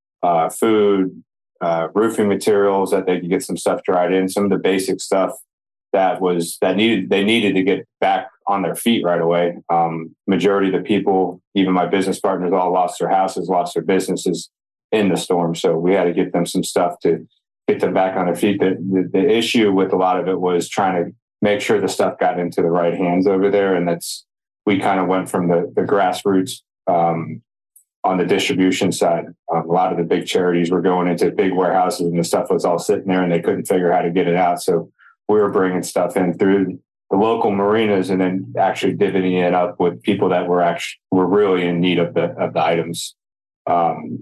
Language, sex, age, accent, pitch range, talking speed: English, male, 30-49, American, 90-100 Hz, 220 wpm